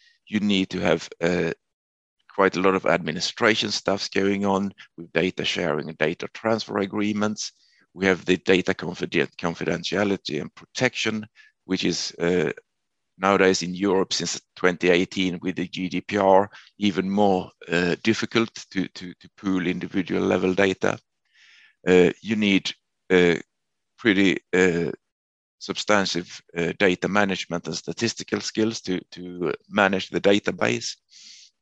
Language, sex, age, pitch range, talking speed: English, male, 50-69, 90-105 Hz, 125 wpm